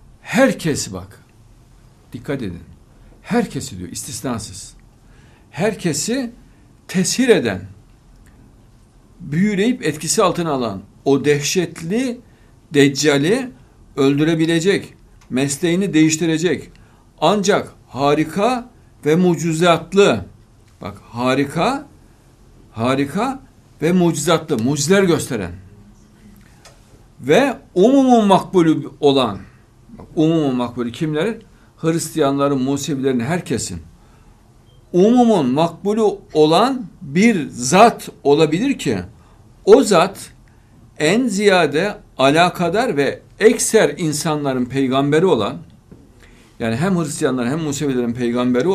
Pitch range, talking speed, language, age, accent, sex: 120-175 Hz, 80 wpm, Turkish, 60-79, native, male